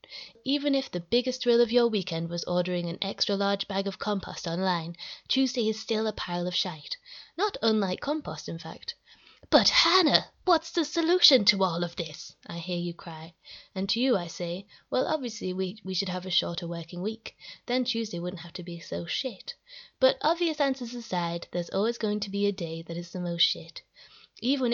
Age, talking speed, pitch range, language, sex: 20-39, 200 wpm, 180-235 Hz, English, female